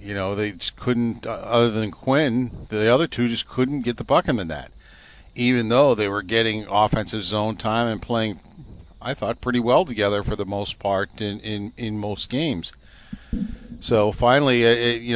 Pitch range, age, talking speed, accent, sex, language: 100-125 Hz, 50-69, 185 wpm, American, male, English